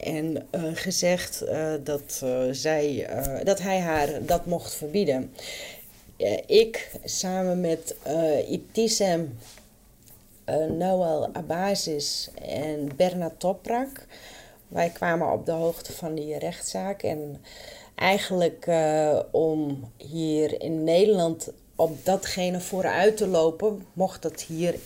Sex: female